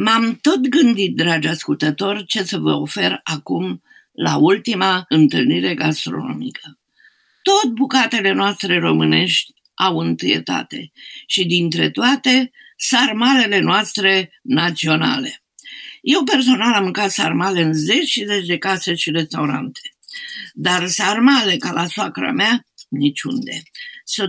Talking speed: 115 wpm